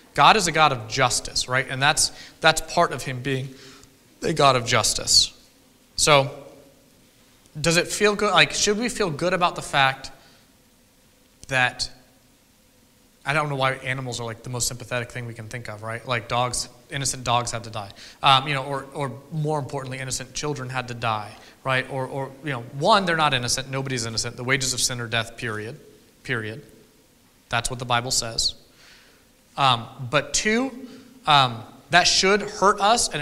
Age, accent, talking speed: 30-49, American, 180 wpm